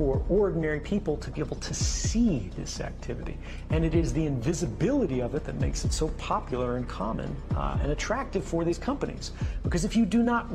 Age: 40-59